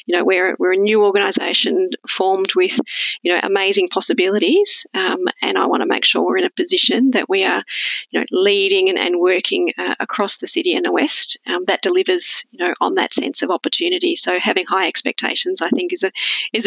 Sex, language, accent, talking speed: female, English, Australian, 210 wpm